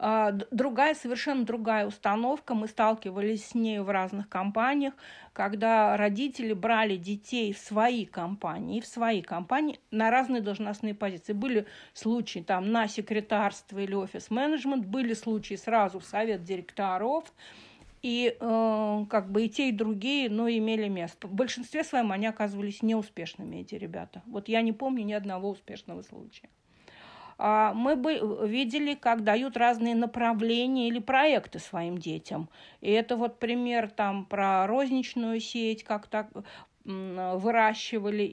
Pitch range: 205-235 Hz